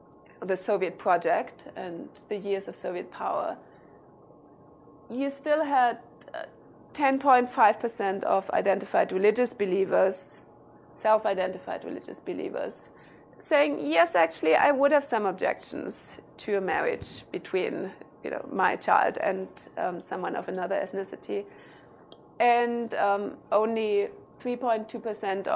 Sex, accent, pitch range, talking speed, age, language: female, German, 190-235 Hz, 110 wpm, 30-49, English